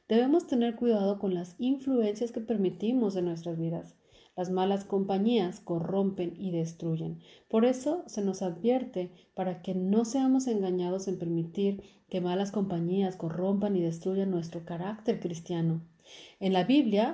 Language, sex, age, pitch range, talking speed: Spanish, female, 40-59, 180-235 Hz, 145 wpm